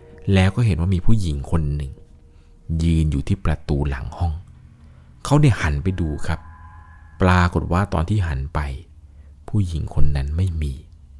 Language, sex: Thai, male